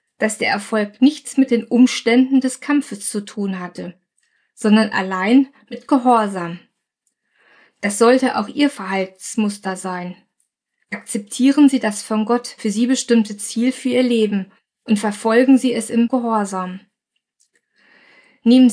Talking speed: 130 wpm